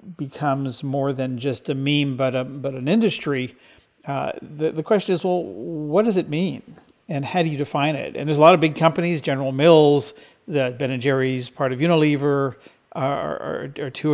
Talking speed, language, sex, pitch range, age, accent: 200 wpm, English, male, 135-155 Hz, 50-69, American